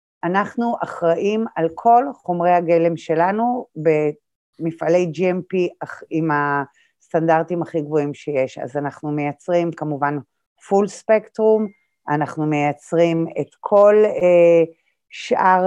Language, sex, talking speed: Hebrew, female, 100 wpm